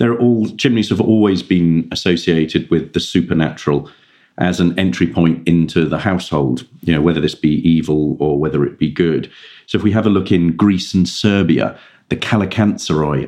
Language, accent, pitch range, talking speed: English, British, 80-95 Hz, 180 wpm